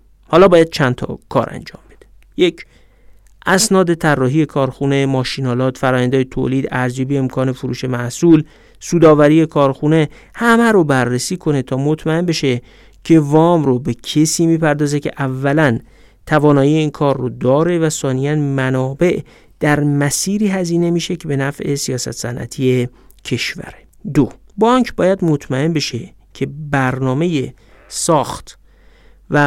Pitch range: 130-165 Hz